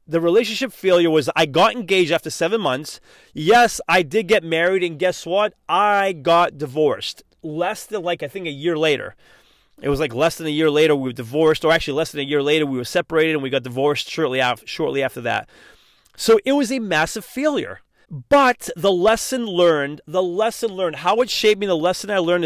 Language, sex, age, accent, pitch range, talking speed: English, male, 30-49, American, 155-220 Hz, 210 wpm